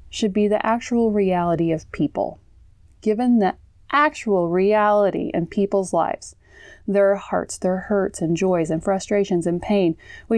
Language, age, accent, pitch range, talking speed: English, 30-49, American, 175-215 Hz, 145 wpm